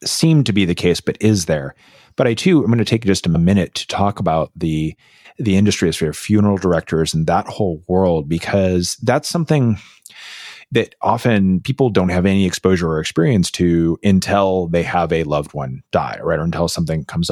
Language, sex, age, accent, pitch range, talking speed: English, male, 30-49, American, 85-110 Hz, 200 wpm